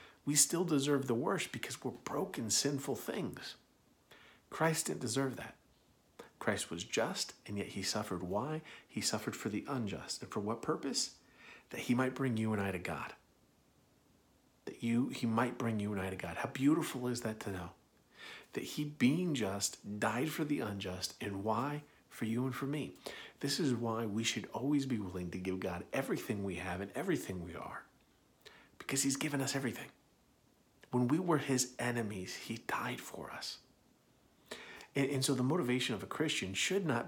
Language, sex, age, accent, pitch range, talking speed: English, male, 50-69, American, 100-135 Hz, 180 wpm